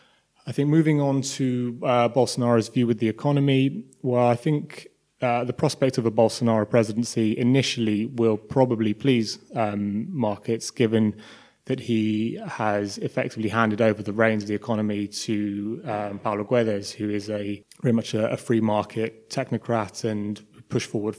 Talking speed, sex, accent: 160 wpm, male, British